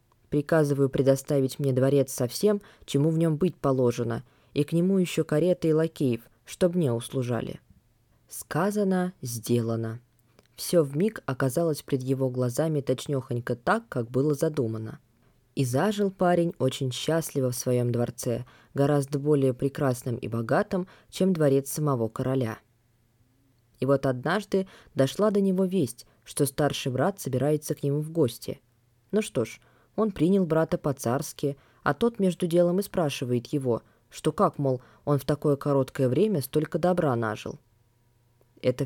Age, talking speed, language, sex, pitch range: 20-39, 145 wpm, Russian, female, 125-160 Hz